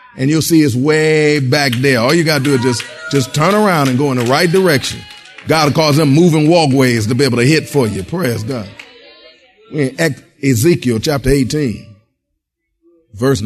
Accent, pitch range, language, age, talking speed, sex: American, 120-165 Hz, English, 50-69, 190 wpm, male